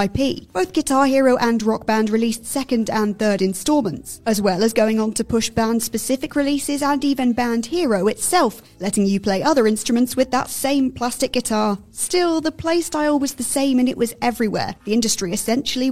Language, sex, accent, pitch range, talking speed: English, female, British, 225-285 Hz, 180 wpm